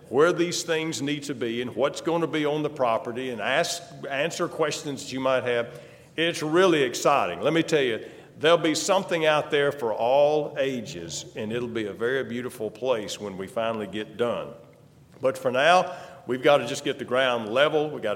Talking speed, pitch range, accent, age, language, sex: 200 wpm, 130-170 Hz, American, 50-69, English, male